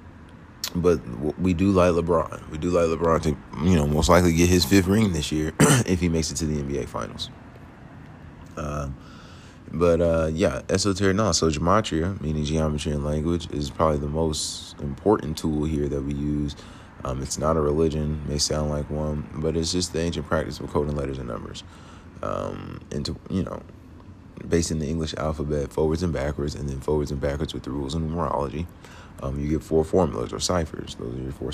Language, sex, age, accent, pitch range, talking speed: English, male, 30-49, American, 75-85 Hz, 200 wpm